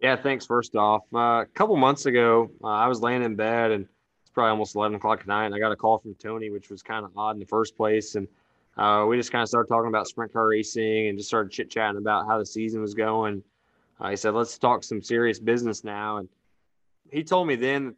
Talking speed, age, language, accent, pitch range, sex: 255 wpm, 20-39, English, American, 105-125 Hz, male